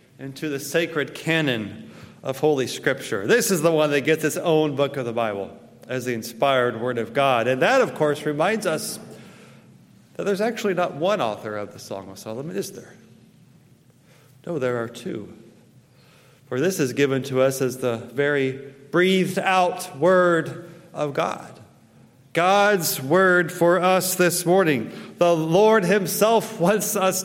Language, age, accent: English, 40-59, American